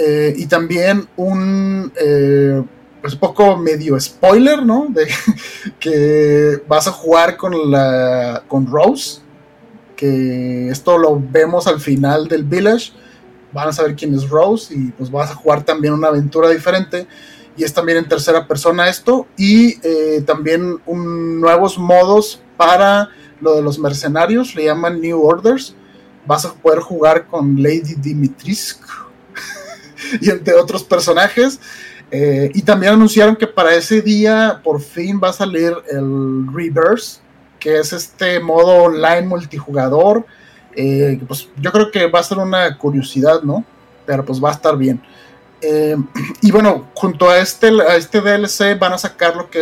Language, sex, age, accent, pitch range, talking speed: Spanish, male, 30-49, Mexican, 145-185 Hz, 155 wpm